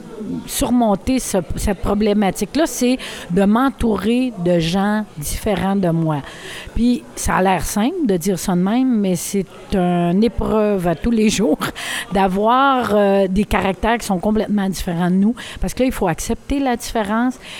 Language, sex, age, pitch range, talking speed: French, female, 50-69, 195-245 Hz, 165 wpm